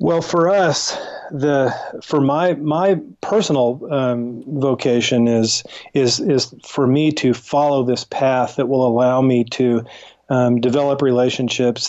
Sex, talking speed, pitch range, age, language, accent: male, 135 wpm, 120-140 Hz, 40-59, English, American